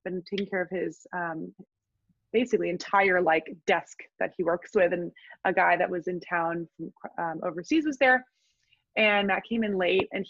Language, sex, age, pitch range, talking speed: English, female, 20-39, 185-240 Hz, 185 wpm